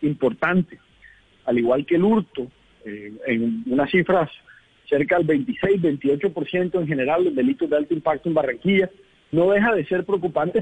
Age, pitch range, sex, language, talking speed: 40-59, 150-200 Hz, male, Spanish, 165 wpm